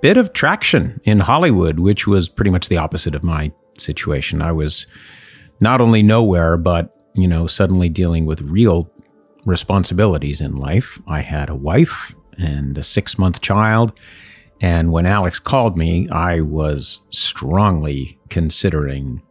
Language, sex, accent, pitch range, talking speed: English, male, American, 80-105 Hz, 145 wpm